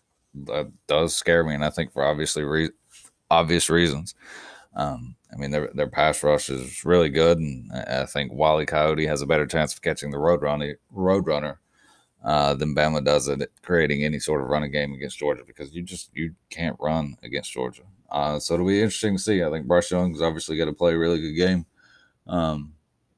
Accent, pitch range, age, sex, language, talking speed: American, 75-85 Hz, 20-39, male, English, 205 wpm